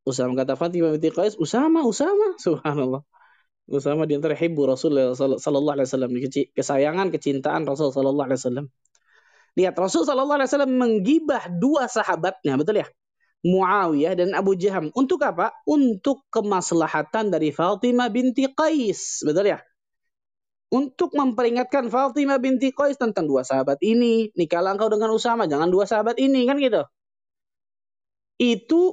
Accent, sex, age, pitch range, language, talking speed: native, male, 20-39, 180-255 Hz, Indonesian, 135 wpm